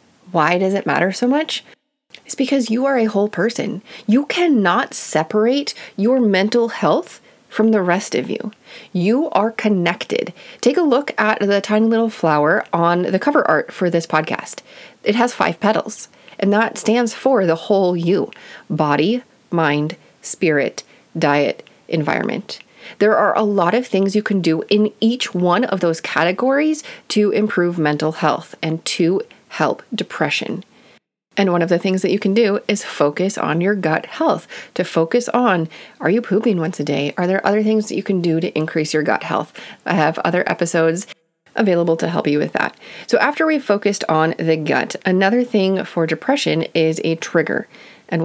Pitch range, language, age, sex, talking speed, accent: 165-225 Hz, English, 30-49, female, 180 wpm, American